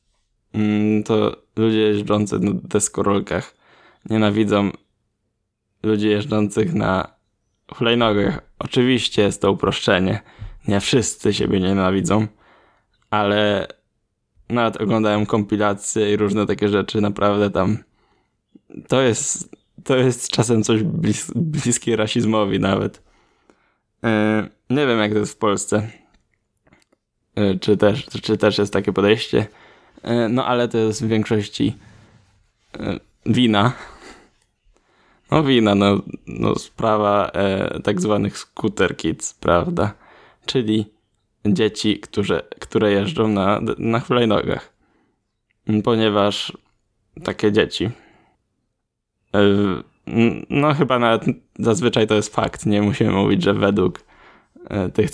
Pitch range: 100-110 Hz